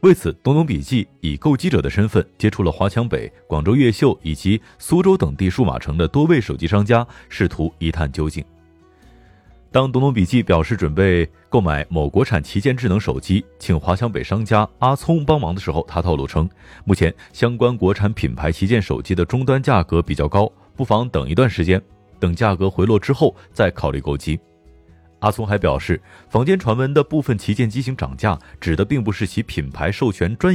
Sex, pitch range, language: male, 85-120 Hz, Chinese